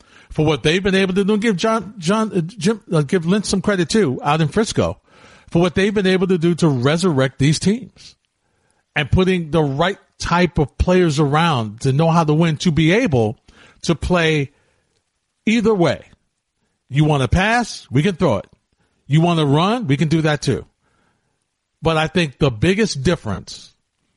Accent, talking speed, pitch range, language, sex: American, 185 wpm, 135-175 Hz, English, male